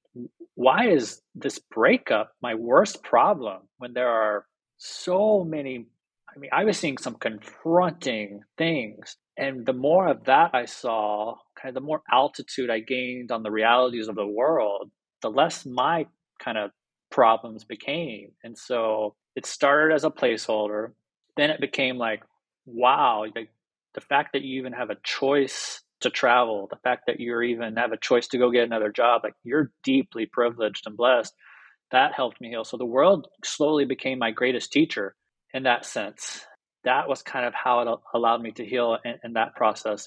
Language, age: English, 30-49